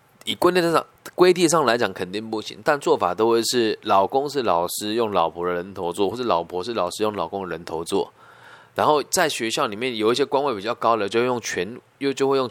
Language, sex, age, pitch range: Chinese, male, 20-39, 105-135 Hz